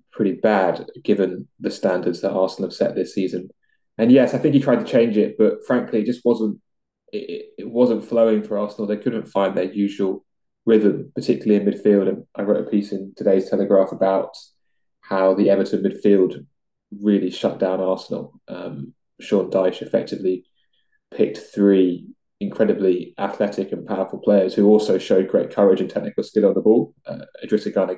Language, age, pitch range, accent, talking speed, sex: English, 20-39, 100-110 Hz, British, 175 wpm, male